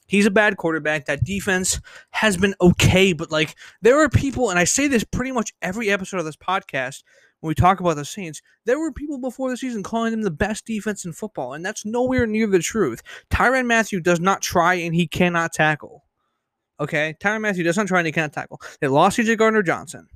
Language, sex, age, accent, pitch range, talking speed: English, male, 20-39, American, 150-210 Hz, 220 wpm